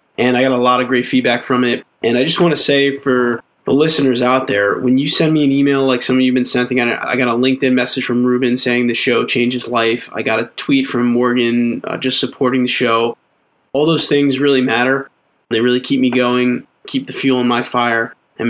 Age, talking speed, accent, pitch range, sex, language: 20-39, 235 wpm, American, 120-130 Hz, male, English